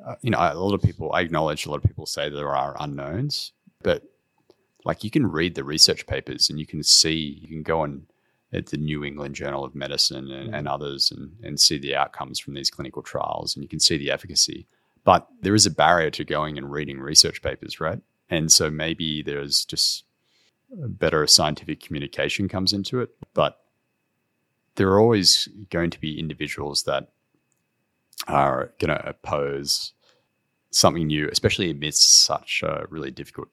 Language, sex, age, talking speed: English, male, 30-49, 180 wpm